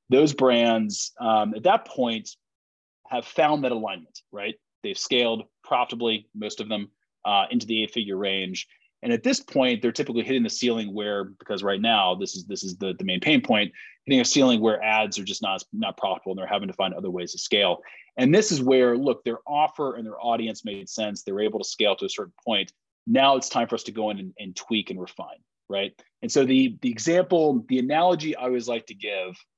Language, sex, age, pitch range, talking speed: English, male, 30-49, 105-135 Hz, 225 wpm